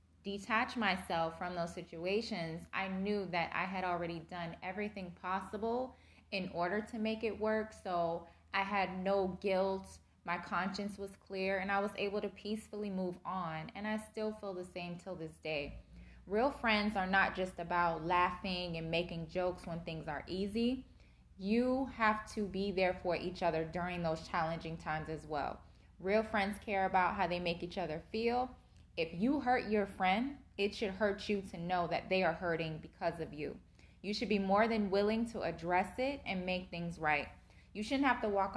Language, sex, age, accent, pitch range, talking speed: English, female, 20-39, American, 175-210 Hz, 185 wpm